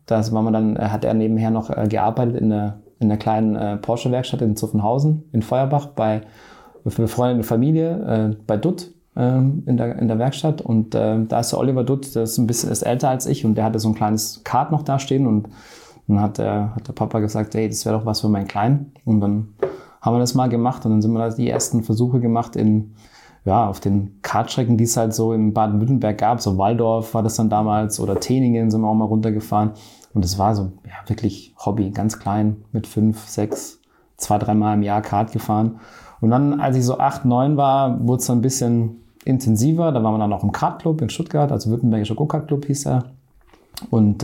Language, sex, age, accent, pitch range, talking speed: German, male, 20-39, German, 105-125 Hz, 210 wpm